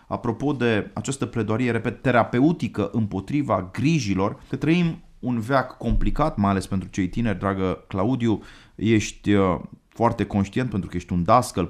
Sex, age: male, 30-49